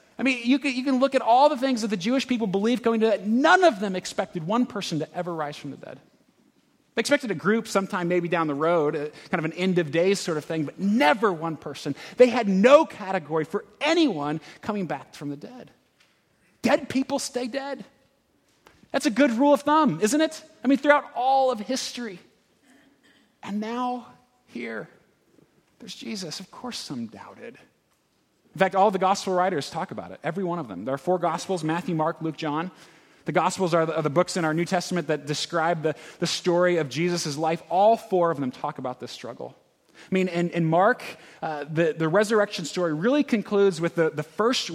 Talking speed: 205 wpm